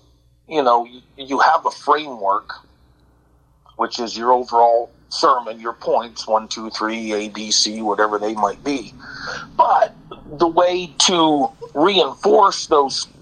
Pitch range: 115-155 Hz